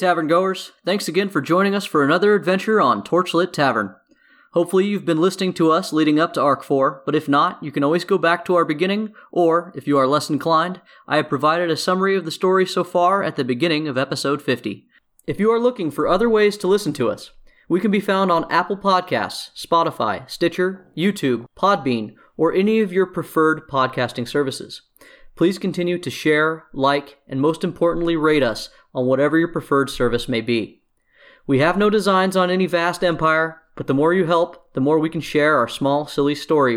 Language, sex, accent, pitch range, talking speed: English, male, American, 145-190 Hz, 205 wpm